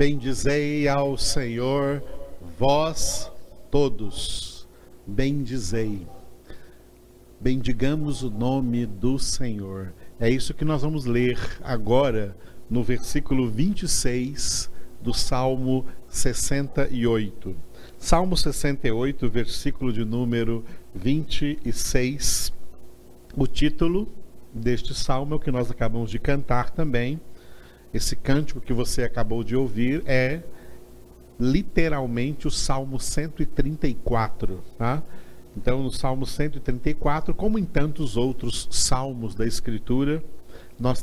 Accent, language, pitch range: Brazilian, Portuguese, 115-145 Hz